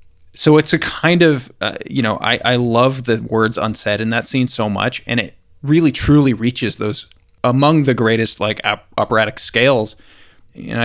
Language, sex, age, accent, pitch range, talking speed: English, male, 20-39, American, 100-120 Hz, 175 wpm